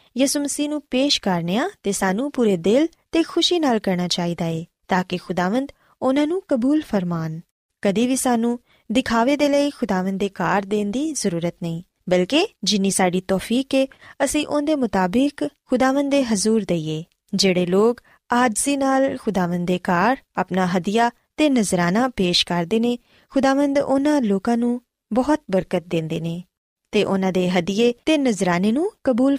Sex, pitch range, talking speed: female, 185-270 Hz, 120 wpm